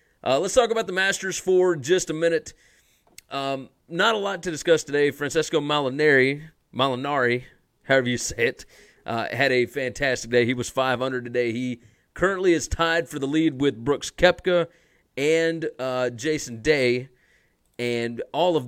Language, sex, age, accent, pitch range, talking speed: English, male, 30-49, American, 125-165 Hz, 160 wpm